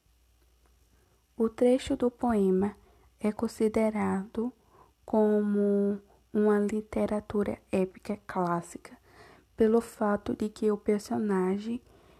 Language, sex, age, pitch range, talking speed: Portuguese, female, 20-39, 195-220 Hz, 85 wpm